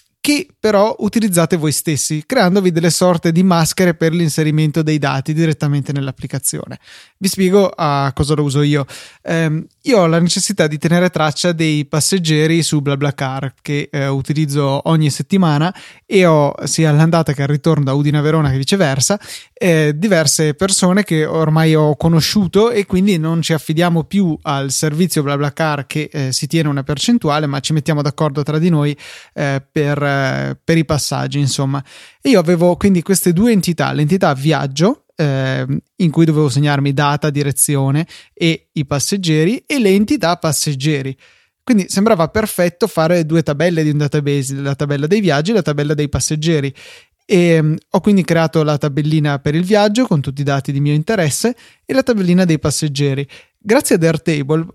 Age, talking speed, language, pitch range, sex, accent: 20-39, 165 wpm, Italian, 145-180 Hz, male, native